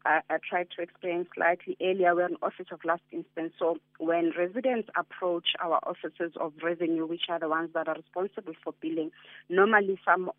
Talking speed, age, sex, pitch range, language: 180 wpm, 40-59, female, 165-190 Hz, English